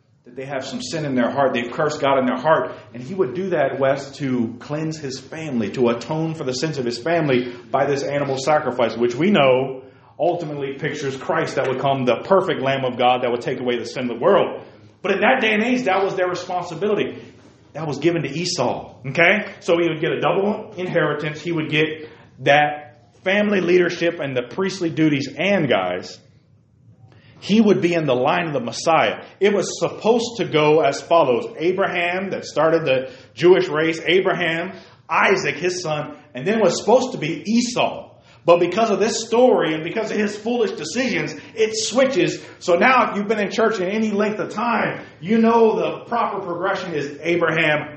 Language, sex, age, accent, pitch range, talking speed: English, male, 30-49, American, 135-195 Hz, 200 wpm